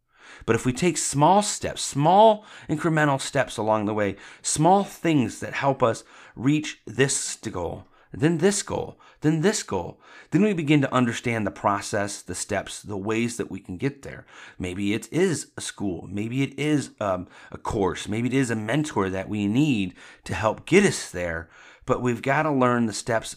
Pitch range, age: 100-135 Hz, 30-49